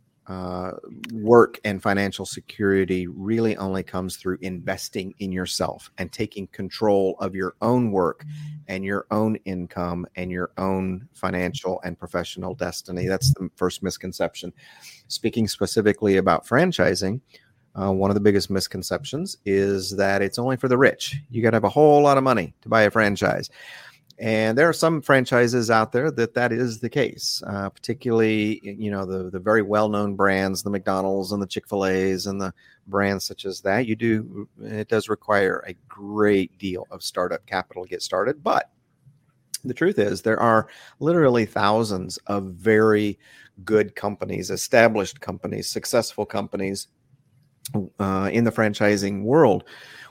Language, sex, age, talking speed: English, male, 40-59, 160 wpm